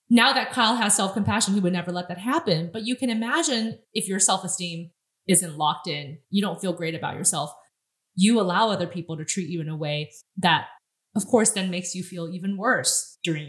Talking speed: 210 wpm